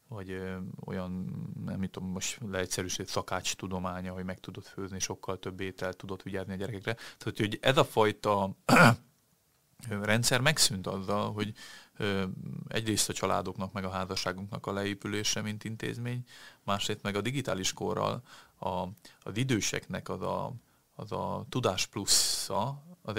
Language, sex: Hungarian, male